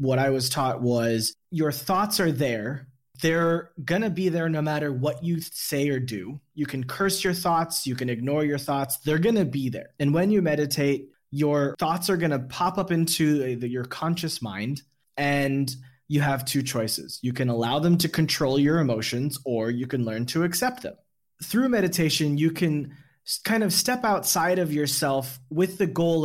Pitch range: 135-180 Hz